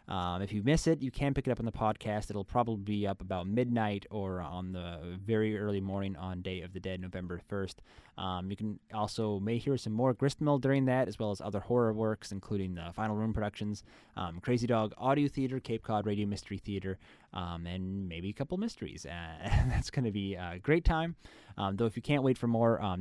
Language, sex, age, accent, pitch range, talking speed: English, male, 20-39, American, 95-120 Hz, 230 wpm